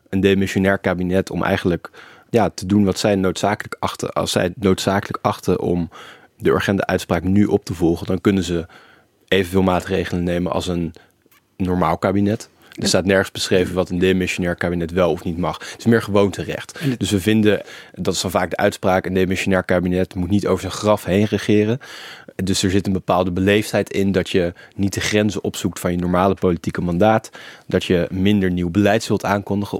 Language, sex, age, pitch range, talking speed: Dutch, male, 20-39, 90-100 Hz, 185 wpm